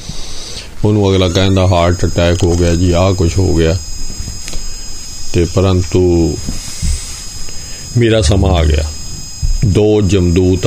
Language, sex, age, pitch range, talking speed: Punjabi, male, 50-69, 85-100 Hz, 110 wpm